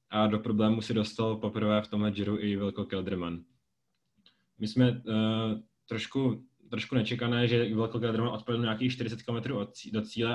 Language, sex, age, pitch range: Czech, male, 20-39, 105-110 Hz